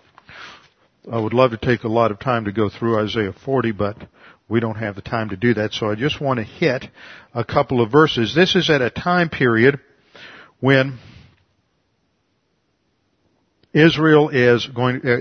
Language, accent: English, American